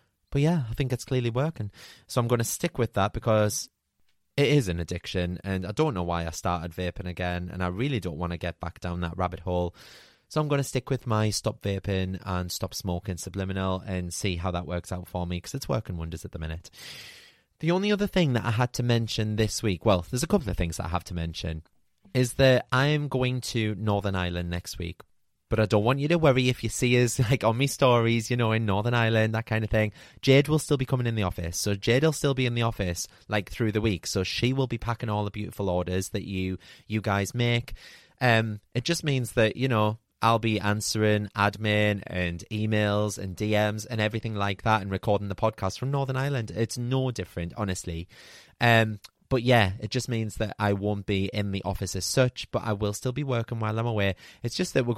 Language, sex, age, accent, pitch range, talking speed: English, male, 20-39, British, 95-120 Hz, 235 wpm